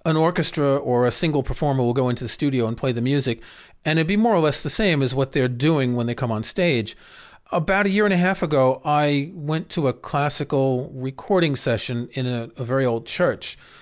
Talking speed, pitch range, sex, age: 225 wpm, 125-160 Hz, male, 40-59